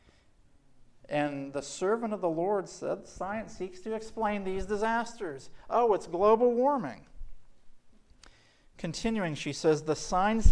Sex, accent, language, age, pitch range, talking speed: male, American, English, 50-69, 145-185 Hz, 125 wpm